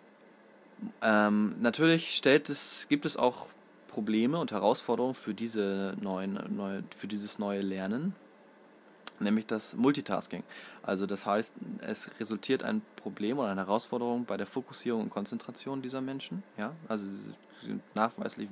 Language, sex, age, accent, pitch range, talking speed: German, male, 20-39, German, 100-135 Hz, 140 wpm